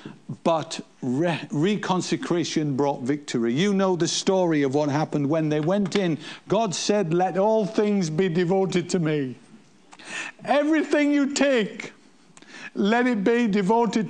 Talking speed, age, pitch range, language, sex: 130 wpm, 50-69, 180-235 Hz, English, male